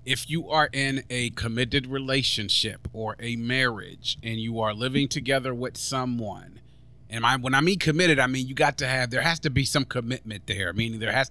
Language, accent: English, American